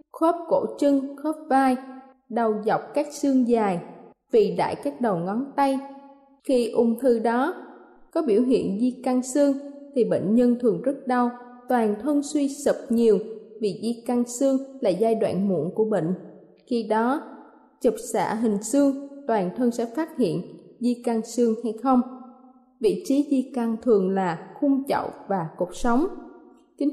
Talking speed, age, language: 165 wpm, 20-39, Vietnamese